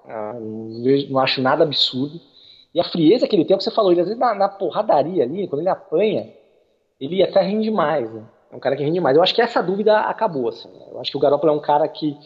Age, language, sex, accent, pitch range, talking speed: 20-39, Portuguese, male, Brazilian, 135-210 Hz, 275 wpm